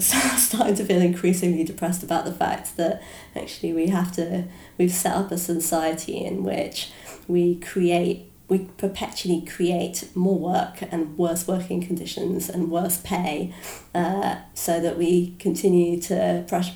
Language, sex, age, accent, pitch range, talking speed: English, female, 20-39, British, 170-185 Hz, 145 wpm